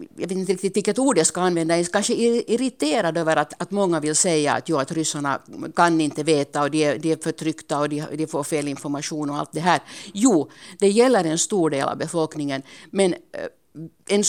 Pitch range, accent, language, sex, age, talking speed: 150-180 Hz, Finnish, Swedish, female, 60-79, 210 wpm